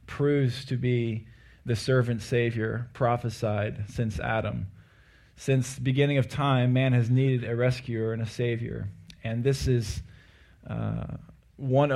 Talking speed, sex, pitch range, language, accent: 135 wpm, male, 120-145 Hz, English, American